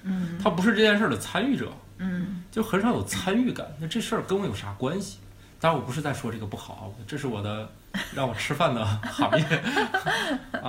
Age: 20-39